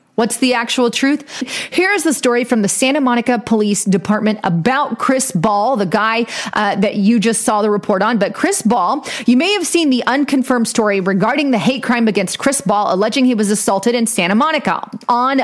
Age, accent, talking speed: 30-49, American, 200 wpm